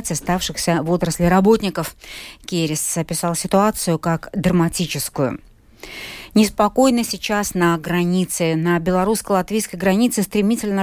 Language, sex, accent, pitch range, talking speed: Russian, female, native, 170-210 Hz, 95 wpm